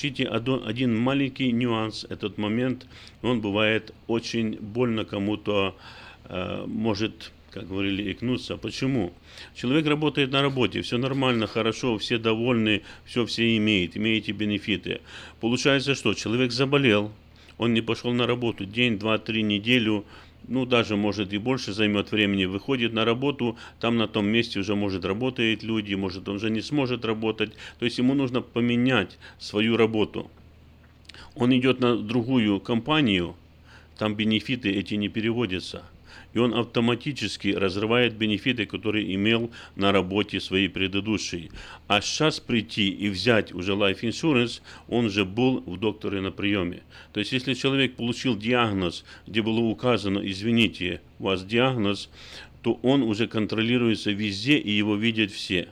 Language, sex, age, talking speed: Russian, male, 50-69, 140 wpm